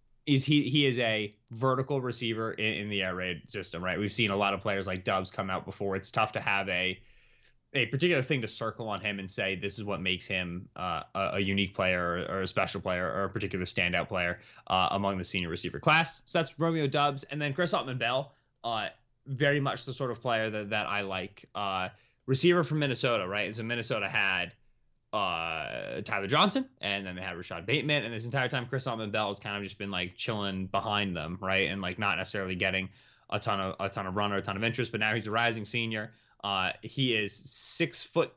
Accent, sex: American, male